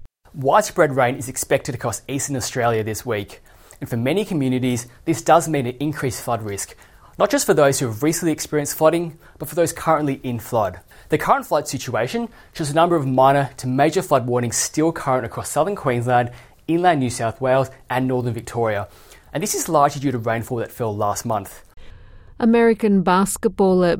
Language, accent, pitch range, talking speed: English, Australian, 135-190 Hz, 185 wpm